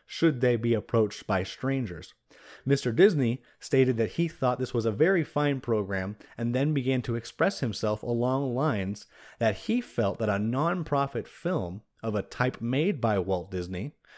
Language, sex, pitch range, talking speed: English, male, 110-140 Hz, 170 wpm